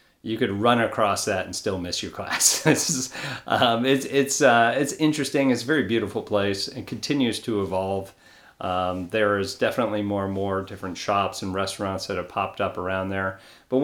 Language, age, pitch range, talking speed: English, 40-59, 95-125 Hz, 185 wpm